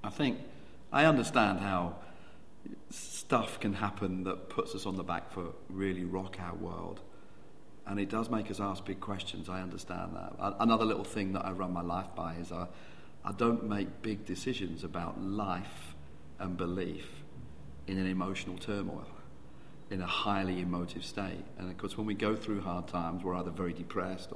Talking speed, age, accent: 175 wpm, 40-59, British